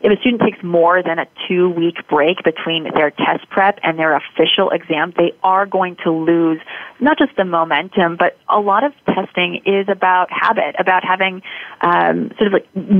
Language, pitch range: English, 165-205 Hz